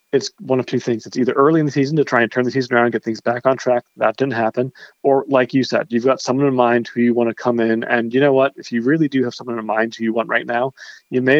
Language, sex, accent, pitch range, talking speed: English, male, American, 115-135 Hz, 320 wpm